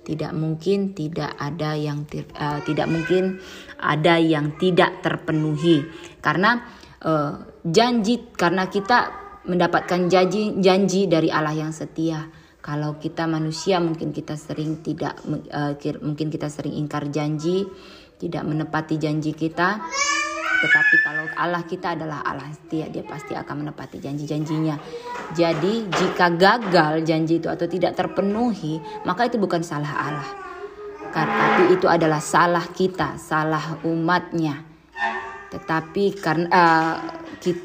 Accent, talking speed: native, 120 wpm